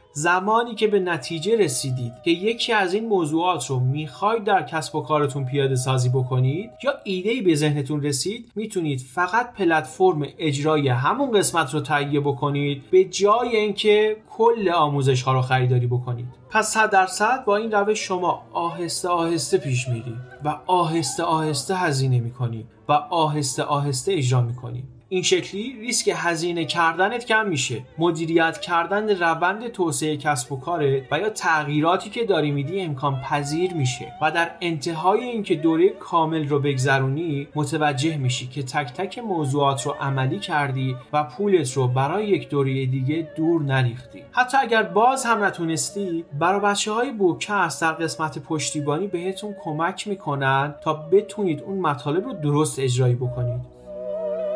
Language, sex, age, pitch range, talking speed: Persian, male, 30-49, 140-195 Hz, 150 wpm